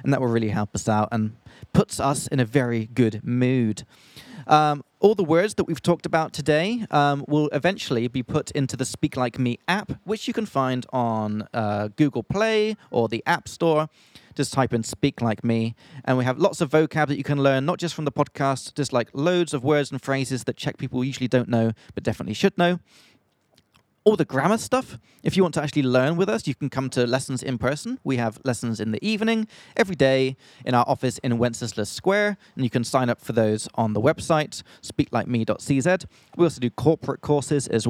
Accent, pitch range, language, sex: British, 120-160 Hz, English, male